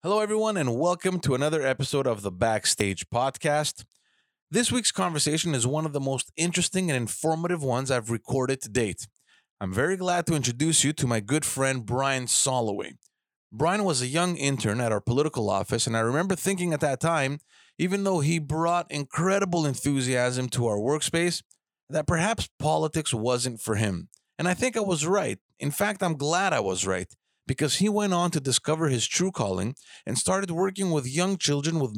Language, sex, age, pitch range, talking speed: English, male, 30-49, 125-175 Hz, 185 wpm